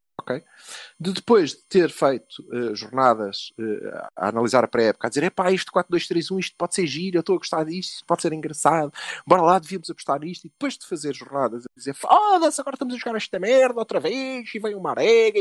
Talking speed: 220 wpm